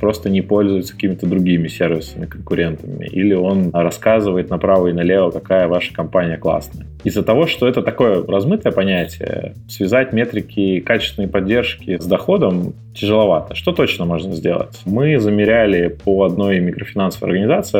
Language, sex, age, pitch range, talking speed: Russian, male, 20-39, 90-110 Hz, 140 wpm